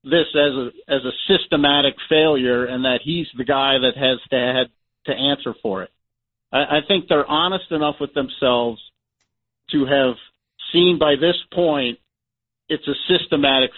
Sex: male